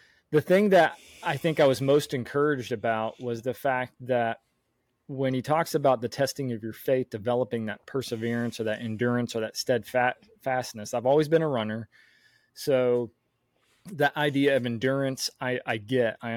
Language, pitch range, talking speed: English, 115-135 Hz, 170 wpm